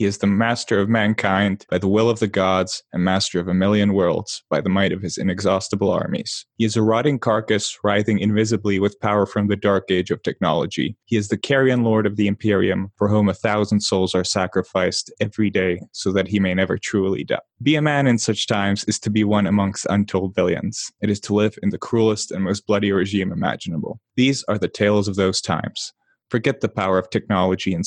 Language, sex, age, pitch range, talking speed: English, male, 20-39, 95-110 Hz, 220 wpm